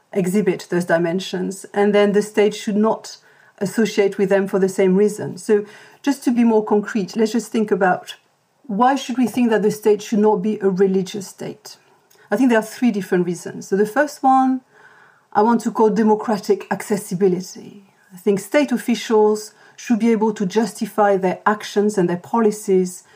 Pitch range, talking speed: 195-225 Hz, 180 wpm